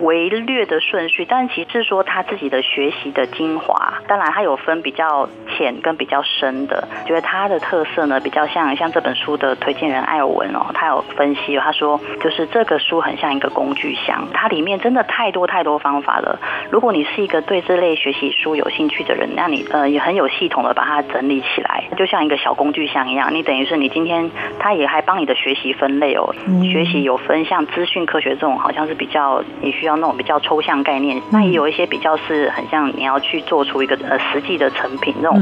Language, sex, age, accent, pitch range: Chinese, female, 20-39, native, 140-175 Hz